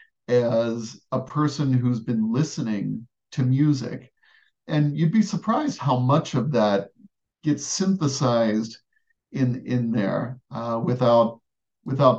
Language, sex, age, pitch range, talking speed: English, male, 50-69, 115-145 Hz, 120 wpm